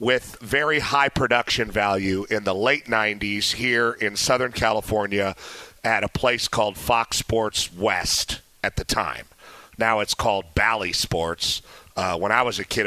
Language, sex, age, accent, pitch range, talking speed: English, male, 40-59, American, 100-125 Hz, 160 wpm